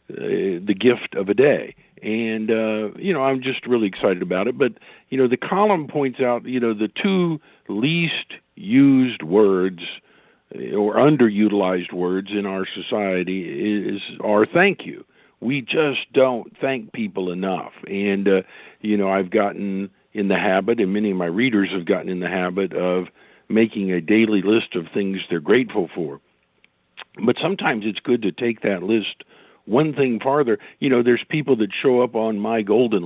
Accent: American